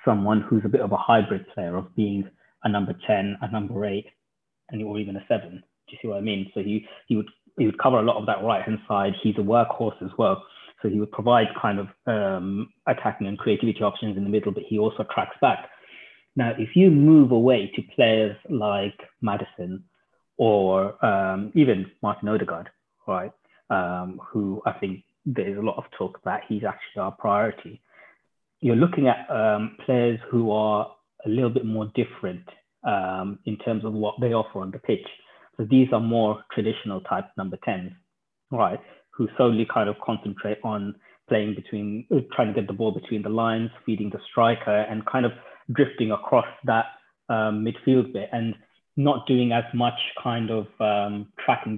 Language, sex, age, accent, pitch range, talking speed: English, male, 20-39, British, 100-115 Hz, 185 wpm